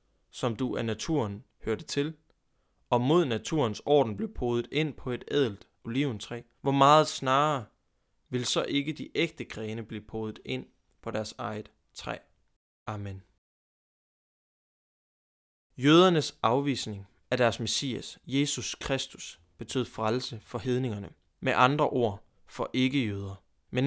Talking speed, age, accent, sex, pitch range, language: 130 wpm, 20-39, native, male, 110-145 Hz, Danish